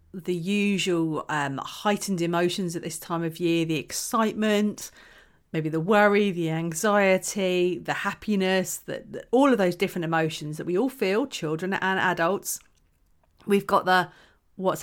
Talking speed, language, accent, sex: 145 wpm, English, British, female